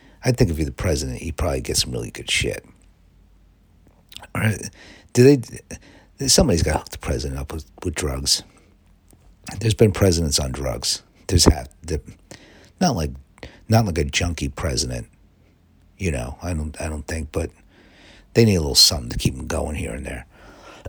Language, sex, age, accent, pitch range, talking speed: English, male, 60-79, American, 75-95 Hz, 170 wpm